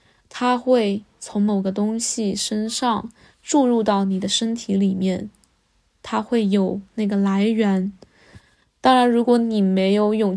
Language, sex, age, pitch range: Chinese, female, 10-29, 205-240 Hz